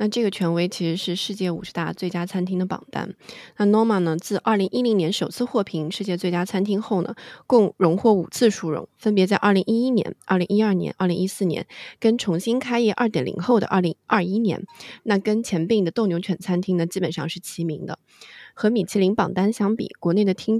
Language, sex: Chinese, female